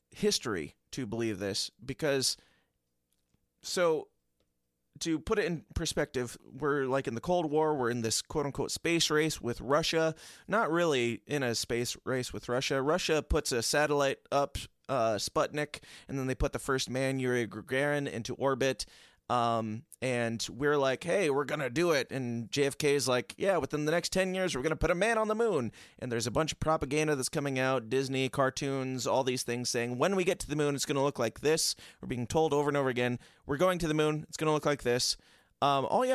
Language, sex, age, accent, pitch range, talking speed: English, male, 30-49, American, 120-150 Hz, 210 wpm